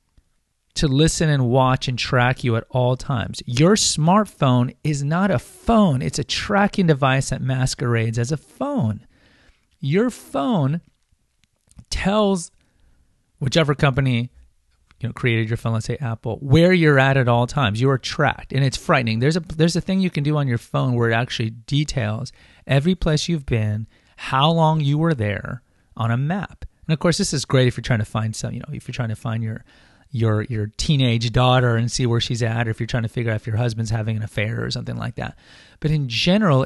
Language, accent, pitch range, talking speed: English, American, 115-150 Hz, 205 wpm